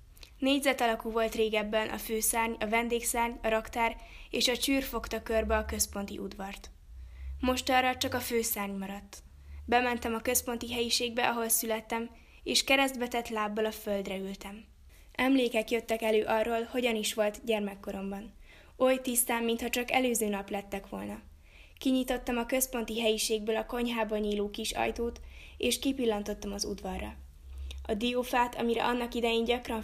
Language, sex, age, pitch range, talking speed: Hungarian, female, 20-39, 205-240 Hz, 145 wpm